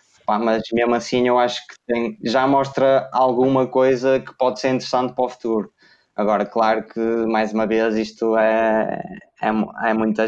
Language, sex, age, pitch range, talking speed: Portuguese, male, 20-39, 110-125 Hz, 170 wpm